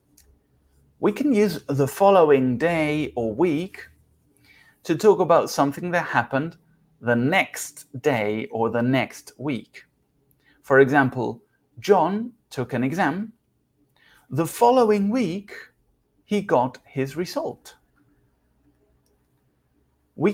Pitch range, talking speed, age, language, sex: 130-175 Hz, 105 wpm, 30-49, Spanish, male